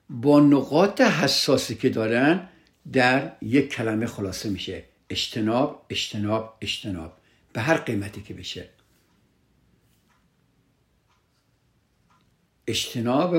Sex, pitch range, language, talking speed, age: male, 110-150 Hz, Persian, 85 wpm, 60-79